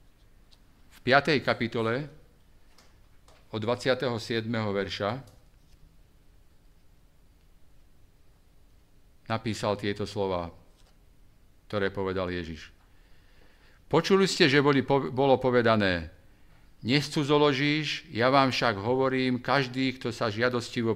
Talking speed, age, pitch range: 75 wpm, 50-69, 95-125 Hz